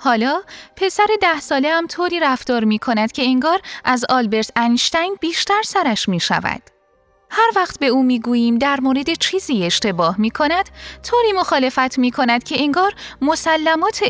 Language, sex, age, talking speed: Persian, female, 10-29, 160 wpm